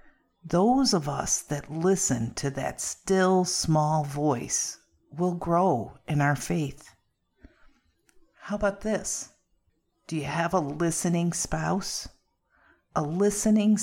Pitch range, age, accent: 130-185 Hz, 50-69, American